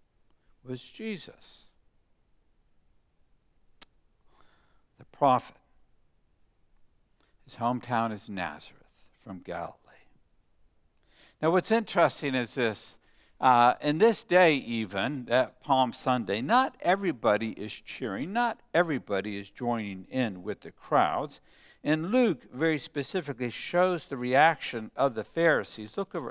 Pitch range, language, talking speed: 110-160 Hz, English, 105 wpm